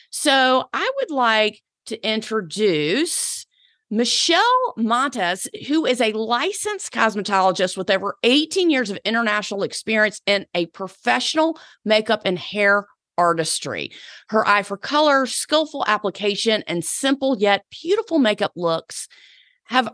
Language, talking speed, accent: English, 120 wpm, American